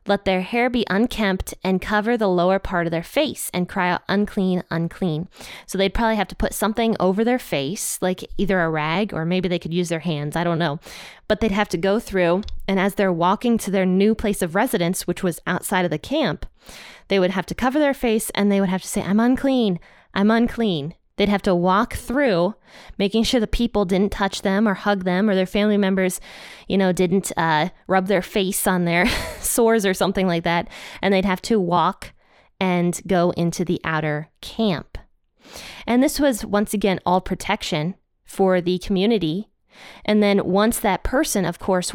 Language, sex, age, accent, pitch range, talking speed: English, female, 20-39, American, 180-210 Hz, 205 wpm